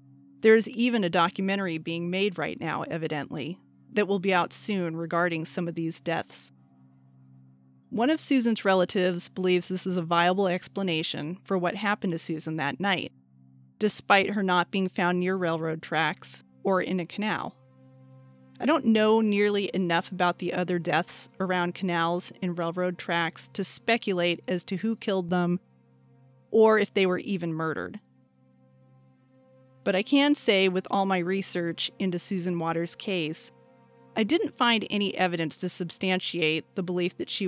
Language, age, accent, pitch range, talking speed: English, 30-49, American, 160-195 Hz, 160 wpm